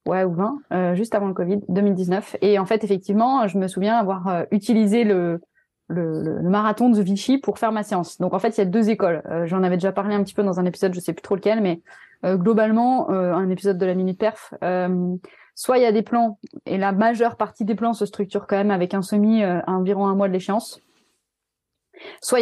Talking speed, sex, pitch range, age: 245 wpm, female, 190-225 Hz, 20-39